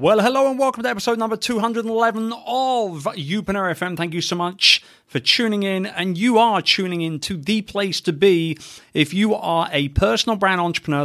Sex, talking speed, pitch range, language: male, 190 wpm, 145-200 Hz, English